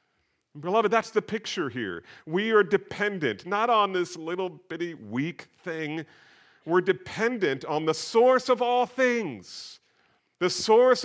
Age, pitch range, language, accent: 40-59, 125-190 Hz, English, American